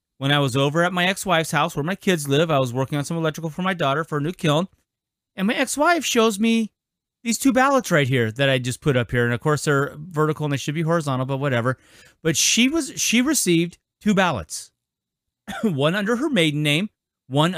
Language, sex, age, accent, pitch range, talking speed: English, male, 30-49, American, 130-190 Hz, 220 wpm